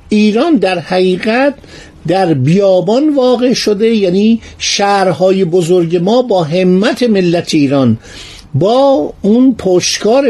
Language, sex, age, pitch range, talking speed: Persian, male, 50-69, 140-210 Hz, 105 wpm